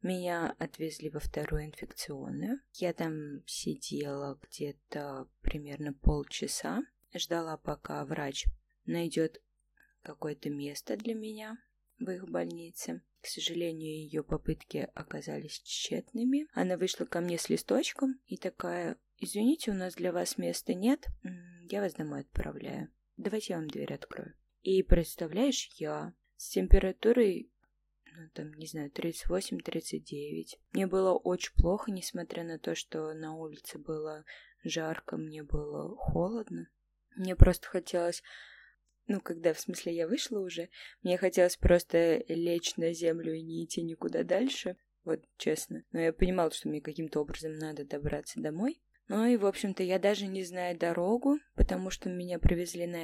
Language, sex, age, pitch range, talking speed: Russian, female, 20-39, 155-190 Hz, 140 wpm